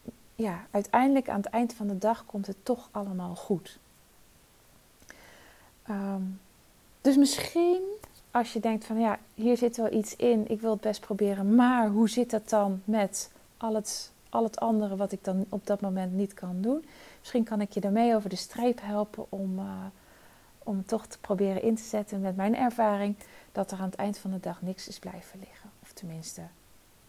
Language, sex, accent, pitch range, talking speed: Dutch, female, Dutch, 180-210 Hz, 185 wpm